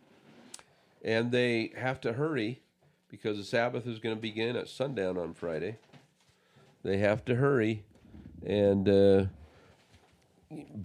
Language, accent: English, American